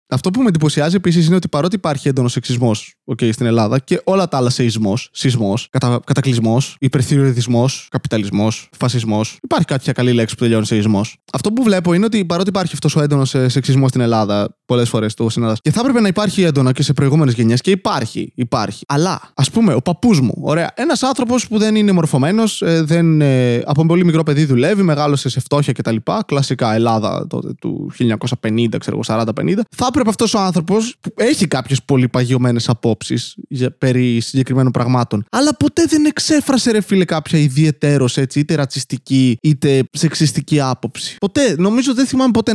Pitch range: 130-210 Hz